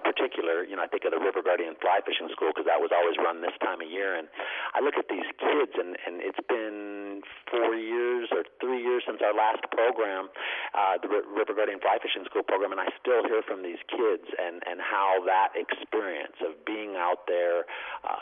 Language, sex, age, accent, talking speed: English, male, 40-59, American, 215 wpm